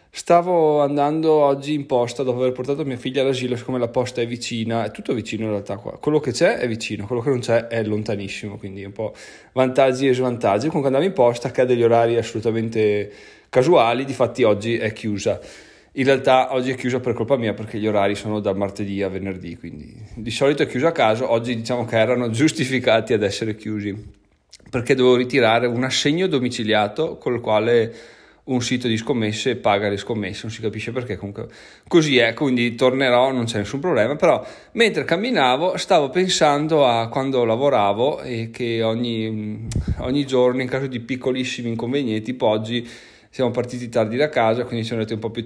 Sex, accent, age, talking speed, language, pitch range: male, native, 30-49, 195 wpm, Italian, 110-130 Hz